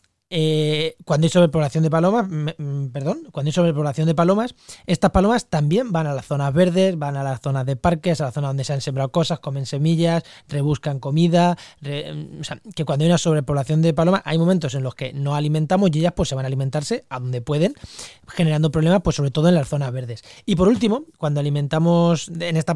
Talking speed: 210 wpm